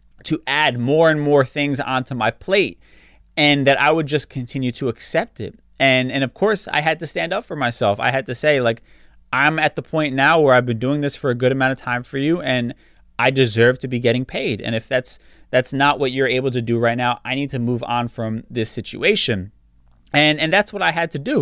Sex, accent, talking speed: male, American, 245 wpm